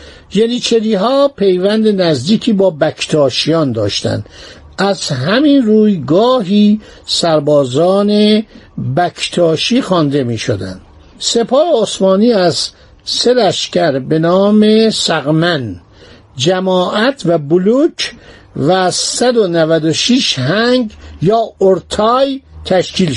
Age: 60-79